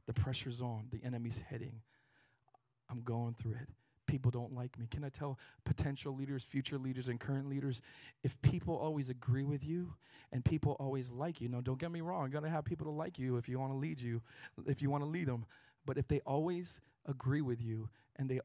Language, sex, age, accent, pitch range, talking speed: English, male, 40-59, American, 120-140 Hz, 220 wpm